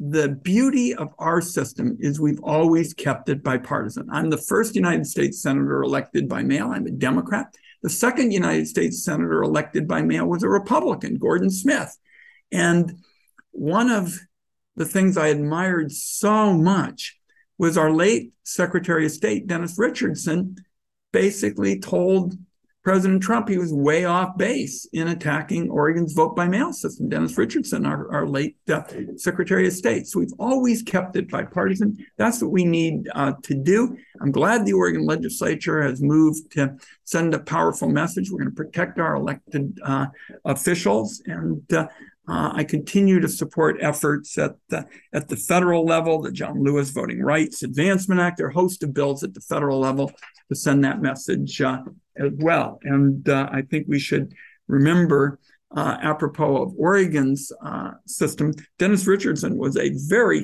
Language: English